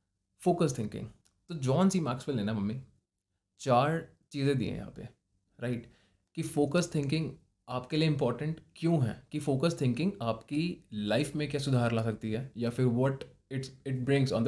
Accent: native